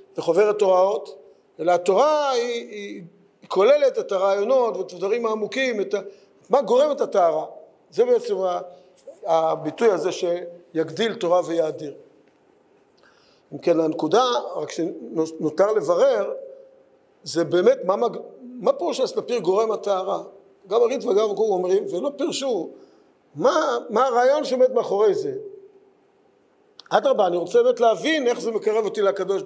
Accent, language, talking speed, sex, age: native, Hebrew, 120 wpm, male, 50-69